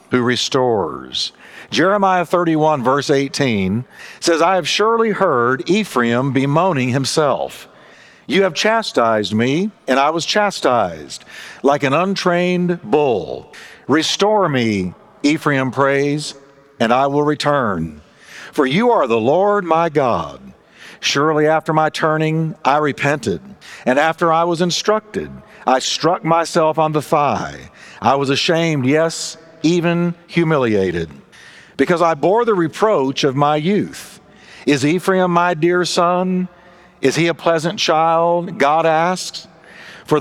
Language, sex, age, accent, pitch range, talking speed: English, male, 50-69, American, 140-180 Hz, 125 wpm